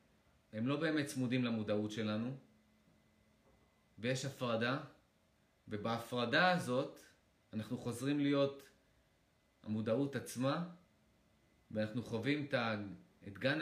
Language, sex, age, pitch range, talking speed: Hebrew, male, 30-49, 110-140 Hz, 85 wpm